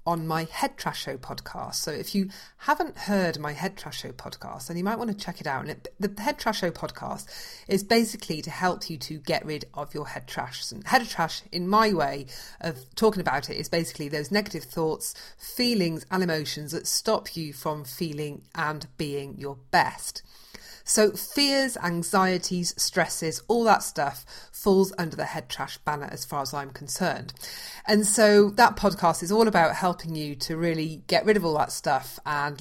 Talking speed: 195 wpm